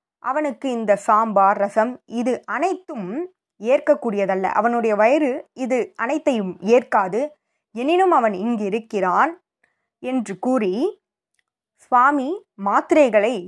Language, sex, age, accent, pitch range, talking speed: Tamil, female, 20-39, native, 200-290 Hz, 95 wpm